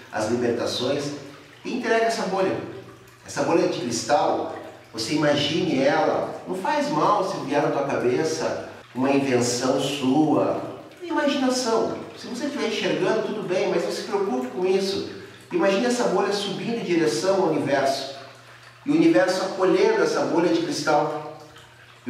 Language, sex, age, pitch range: Portuguese, male, 40-59, 120-180 Hz